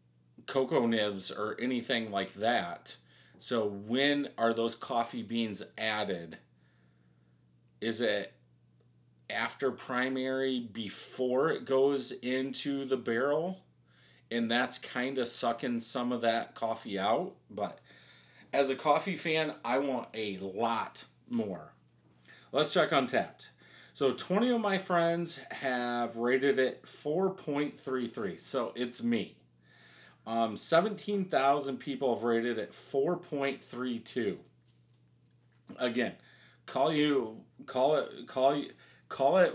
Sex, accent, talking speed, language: male, American, 115 wpm, English